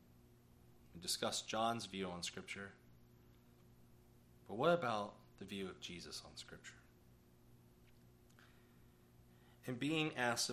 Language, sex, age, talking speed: English, male, 30-49, 105 wpm